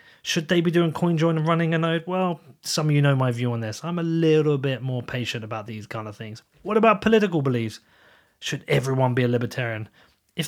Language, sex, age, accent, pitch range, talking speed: English, male, 30-49, British, 120-170 Hz, 225 wpm